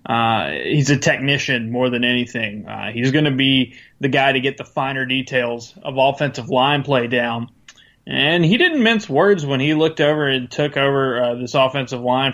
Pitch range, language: 125-140 Hz, English